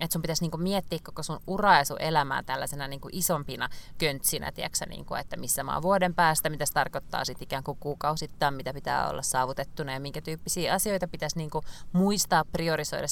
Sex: female